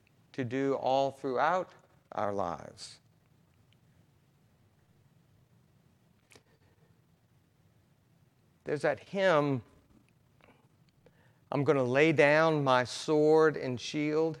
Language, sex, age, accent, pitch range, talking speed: English, male, 50-69, American, 120-145 Hz, 75 wpm